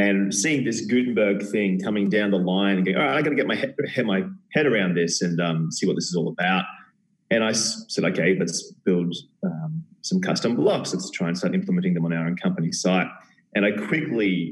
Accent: Australian